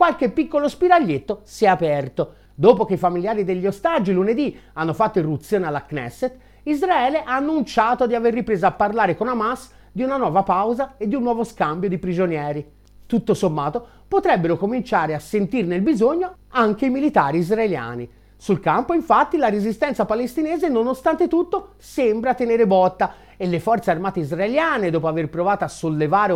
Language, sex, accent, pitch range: Italian, male, native, 175-255 Hz